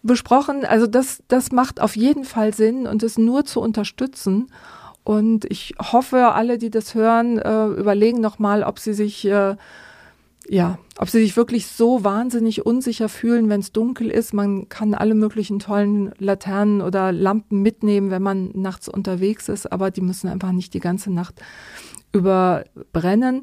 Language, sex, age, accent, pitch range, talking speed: German, female, 40-59, German, 190-220 Hz, 155 wpm